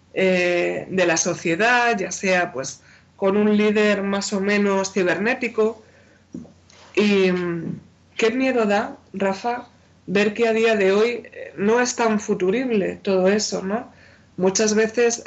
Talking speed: 135 wpm